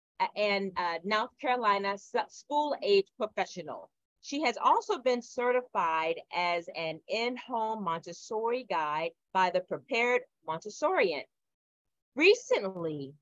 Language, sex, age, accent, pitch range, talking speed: English, female, 40-59, American, 185-255 Hz, 95 wpm